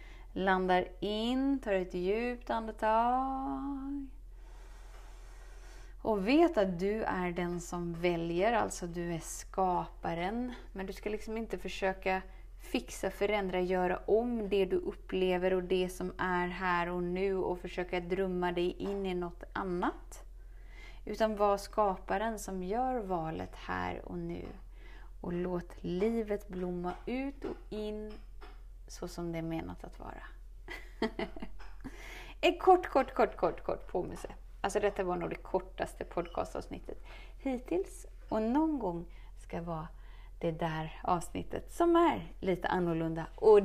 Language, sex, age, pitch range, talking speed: Swedish, female, 30-49, 175-220 Hz, 135 wpm